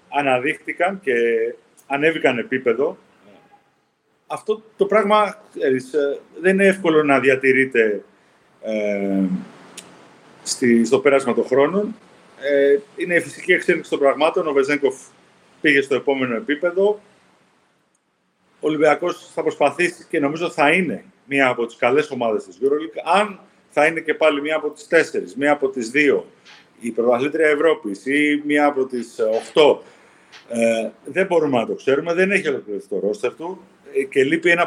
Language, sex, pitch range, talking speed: Greek, male, 130-175 Hz, 135 wpm